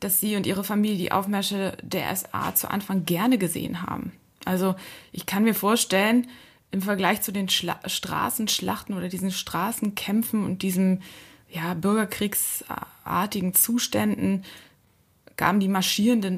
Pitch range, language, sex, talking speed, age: 175-205 Hz, German, female, 125 wpm, 20-39